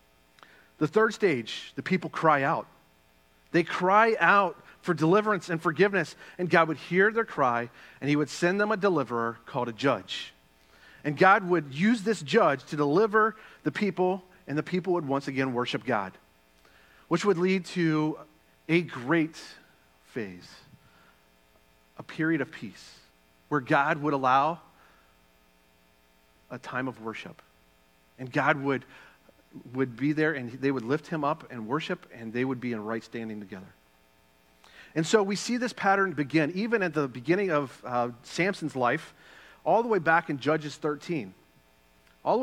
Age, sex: 40-59, male